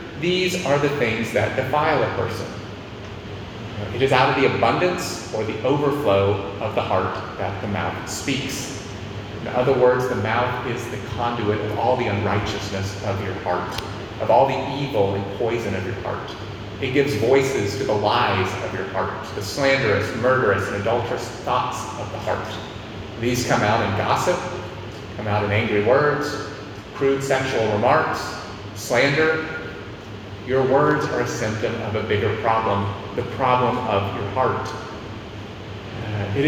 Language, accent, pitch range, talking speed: English, American, 100-130 Hz, 160 wpm